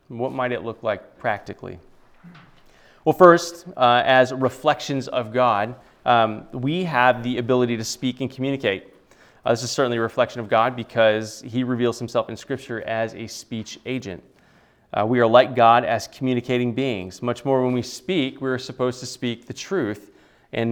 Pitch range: 115-130 Hz